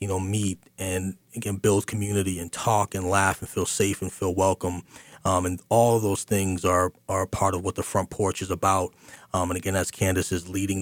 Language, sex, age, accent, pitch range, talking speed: English, male, 30-49, American, 95-105 Hz, 220 wpm